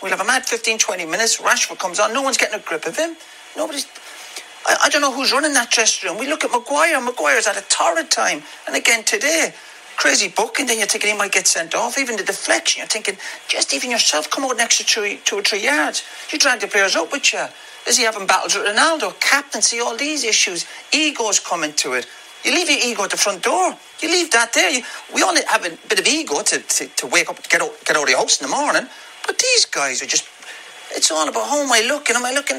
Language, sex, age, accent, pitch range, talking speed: English, male, 40-59, British, 195-300 Hz, 255 wpm